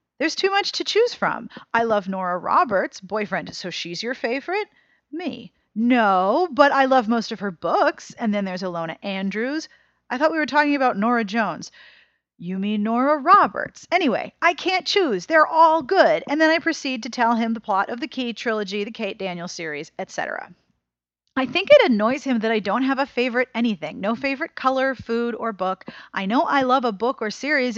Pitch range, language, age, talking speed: 210-300 Hz, English, 40-59, 200 wpm